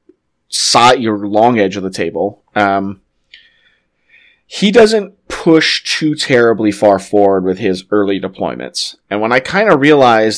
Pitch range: 100-120 Hz